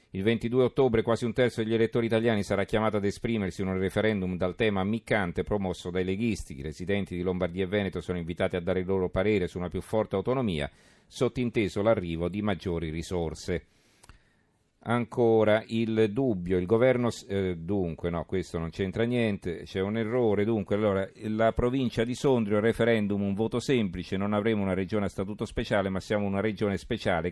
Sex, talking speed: male, 180 wpm